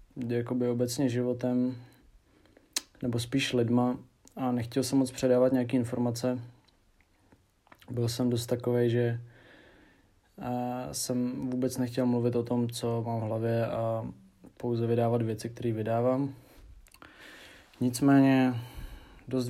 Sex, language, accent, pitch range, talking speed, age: male, Czech, native, 115-125 Hz, 115 wpm, 20-39